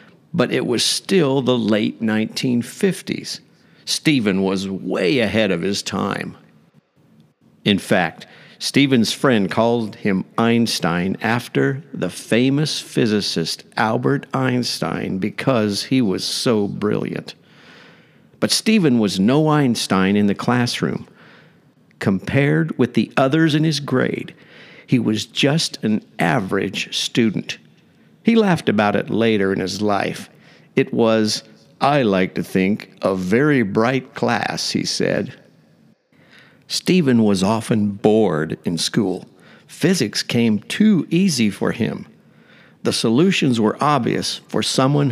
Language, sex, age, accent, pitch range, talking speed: English, male, 50-69, American, 105-140 Hz, 120 wpm